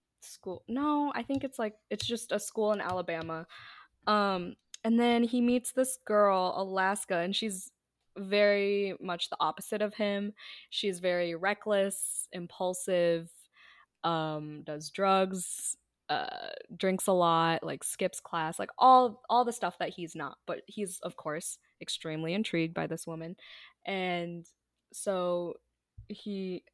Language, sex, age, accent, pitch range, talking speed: English, female, 20-39, American, 175-235 Hz, 140 wpm